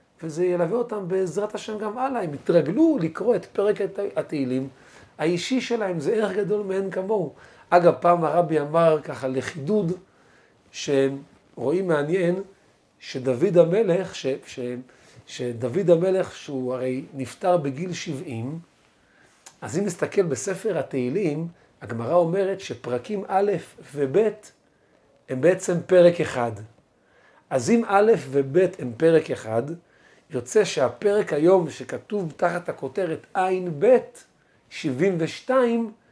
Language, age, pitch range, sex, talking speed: Hebrew, 40-59, 140-200 Hz, male, 115 wpm